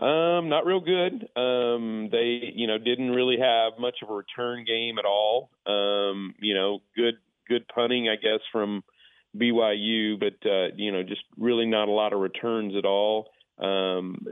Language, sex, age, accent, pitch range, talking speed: English, male, 40-59, American, 100-120 Hz, 175 wpm